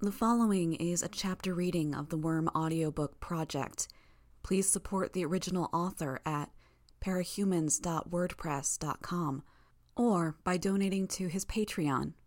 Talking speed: 115 wpm